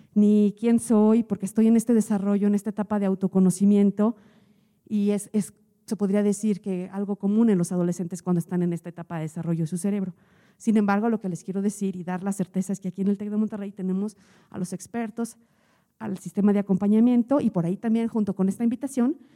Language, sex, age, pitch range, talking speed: Spanish, female, 40-59, 195-230 Hz, 215 wpm